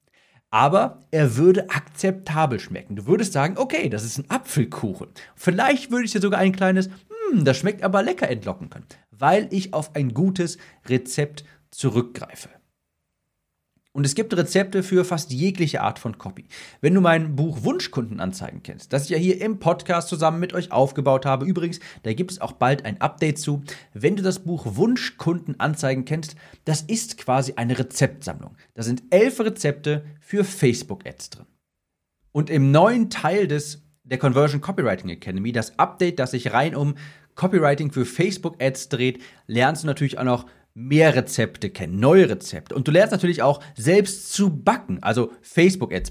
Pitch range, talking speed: 125-180 Hz, 165 wpm